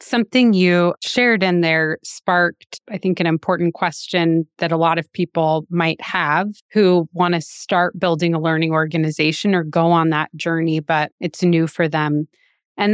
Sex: female